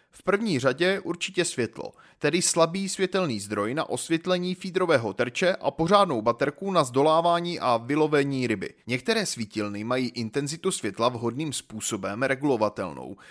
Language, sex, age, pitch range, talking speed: Czech, male, 30-49, 130-190 Hz, 130 wpm